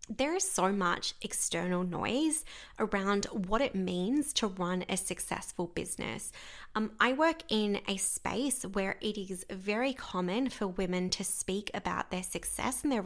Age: 20-39